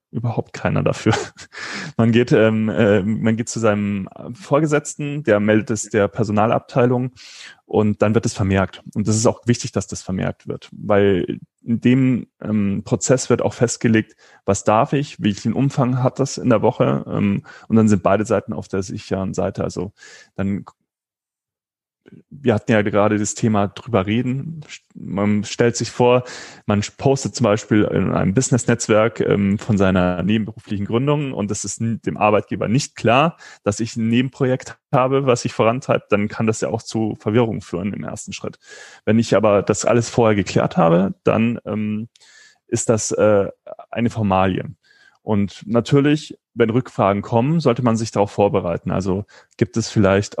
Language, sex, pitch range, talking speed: German, male, 105-120 Hz, 165 wpm